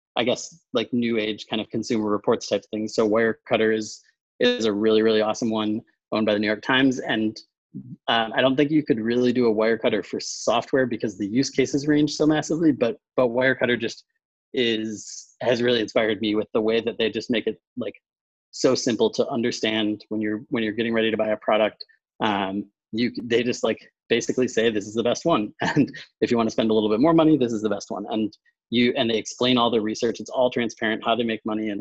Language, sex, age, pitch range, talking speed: English, male, 30-49, 105-120 Hz, 230 wpm